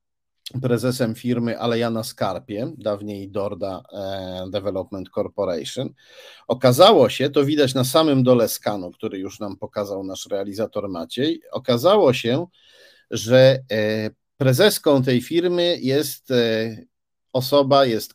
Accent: native